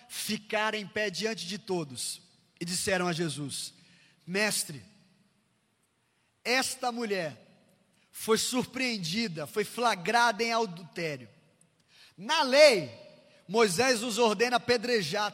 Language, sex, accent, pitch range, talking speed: Portuguese, male, Brazilian, 155-215 Hz, 100 wpm